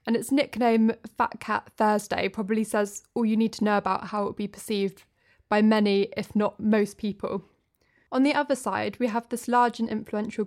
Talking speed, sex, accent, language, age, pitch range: 200 wpm, female, British, English, 20-39, 205-230 Hz